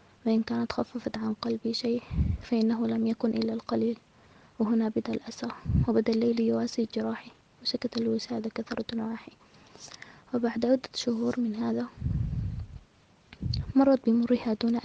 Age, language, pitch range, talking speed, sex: 20-39, Arabic, 225-240 Hz, 125 wpm, female